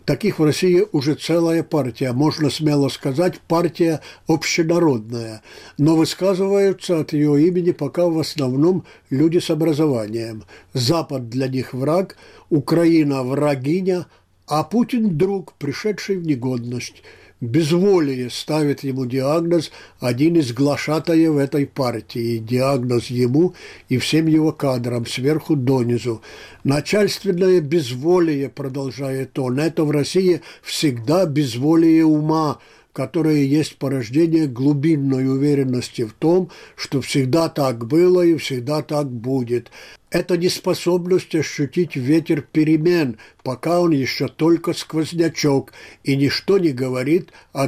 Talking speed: 115 wpm